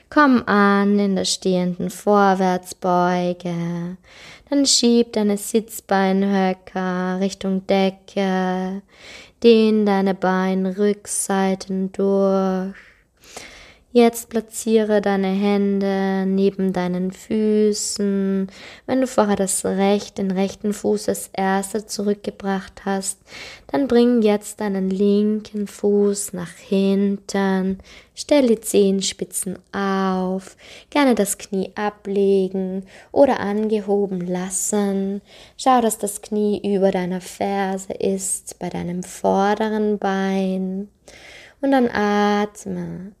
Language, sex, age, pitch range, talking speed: German, female, 20-39, 190-215 Hz, 95 wpm